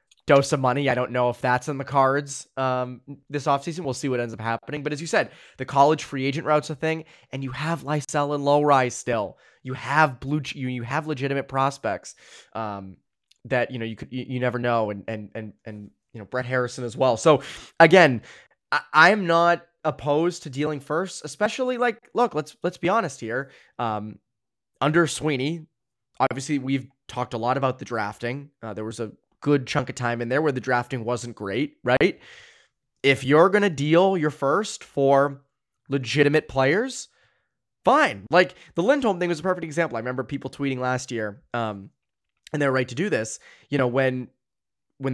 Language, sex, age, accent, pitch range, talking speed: English, male, 20-39, American, 125-155 Hz, 195 wpm